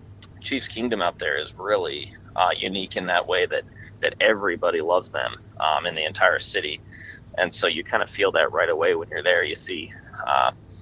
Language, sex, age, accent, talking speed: English, male, 20-39, American, 200 wpm